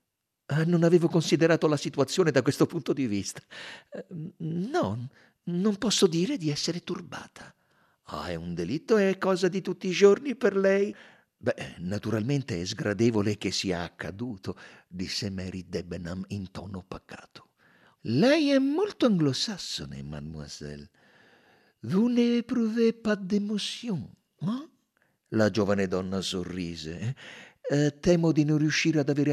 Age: 50-69